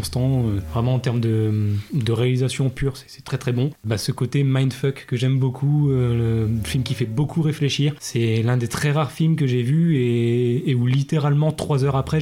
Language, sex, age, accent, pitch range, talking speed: French, male, 20-39, French, 115-140 Hz, 215 wpm